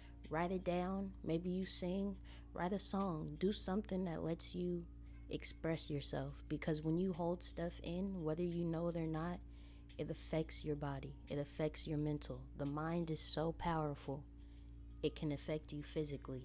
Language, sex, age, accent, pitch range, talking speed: English, female, 20-39, American, 145-185 Hz, 170 wpm